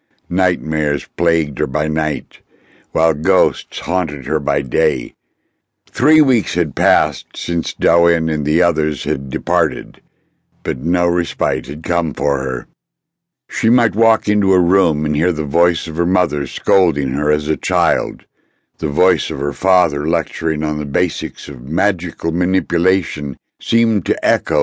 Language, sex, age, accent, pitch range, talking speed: English, male, 60-79, American, 80-100 Hz, 150 wpm